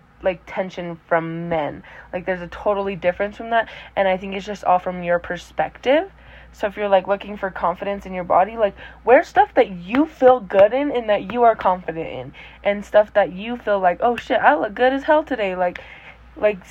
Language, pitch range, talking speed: English, 190-240 Hz, 215 wpm